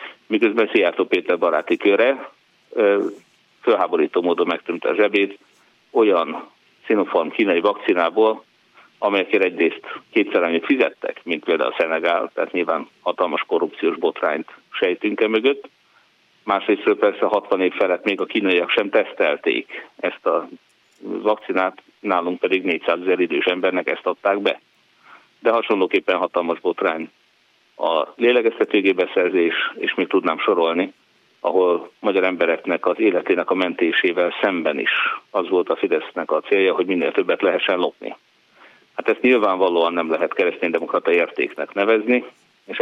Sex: male